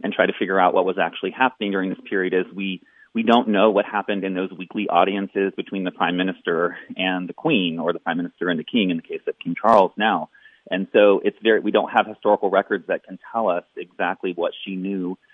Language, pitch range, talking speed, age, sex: English, 95-115 Hz, 240 wpm, 30-49, male